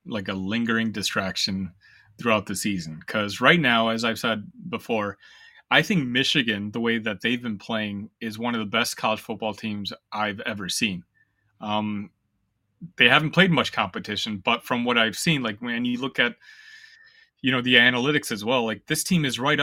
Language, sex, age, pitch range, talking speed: English, male, 30-49, 110-155 Hz, 185 wpm